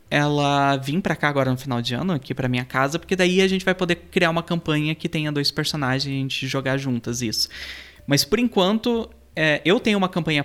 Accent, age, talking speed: Brazilian, 20-39, 225 wpm